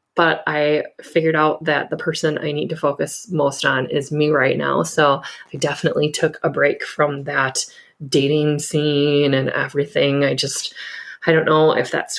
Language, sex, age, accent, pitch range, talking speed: English, female, 20-39, American, 150-185 Hz, 175 wpm